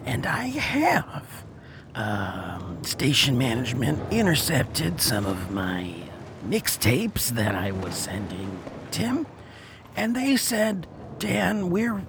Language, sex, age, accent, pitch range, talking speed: English, male, 40-59, American, 115-190 Hz, 105 wpm